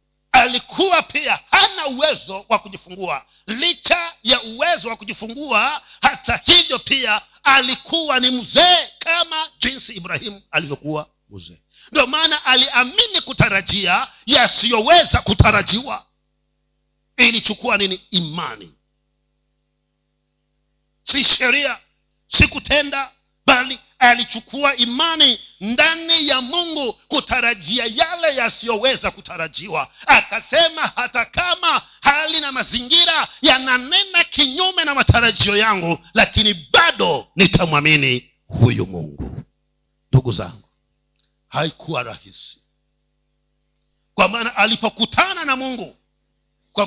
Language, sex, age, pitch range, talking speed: Swahili, male, 50-69, 175-290 Hz, 95 wpm